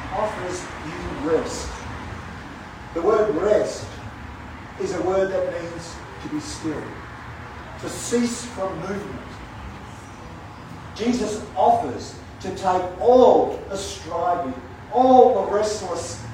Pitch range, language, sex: 95-150 Hz, English, male